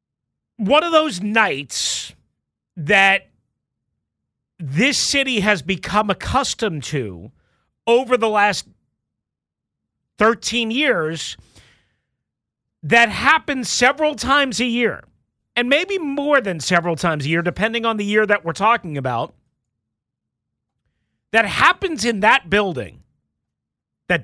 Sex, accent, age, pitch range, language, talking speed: male, American, 40-59, 180-235 Hz, English, 110 wpm